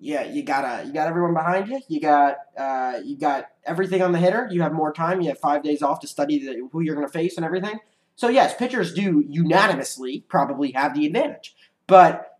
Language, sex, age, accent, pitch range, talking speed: English, male, 20-39, American, 155-215 Hz, 225 wpm